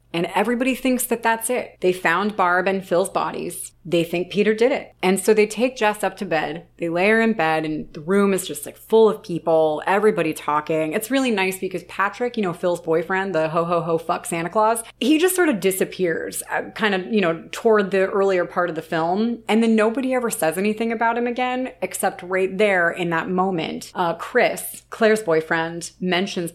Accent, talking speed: American, 205 wpm